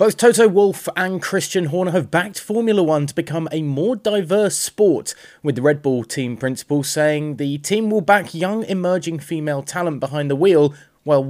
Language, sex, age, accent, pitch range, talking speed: English, male, 30-49, British, 115-175 Hz, 185 wpm